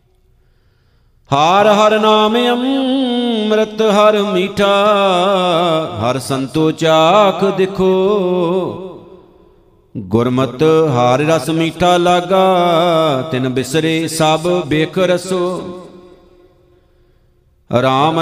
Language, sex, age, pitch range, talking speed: Punjabi, male, 50-69, 160-180 Hz, 70 wpm